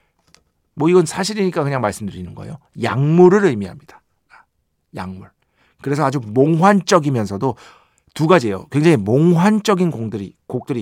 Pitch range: 115-175 Hz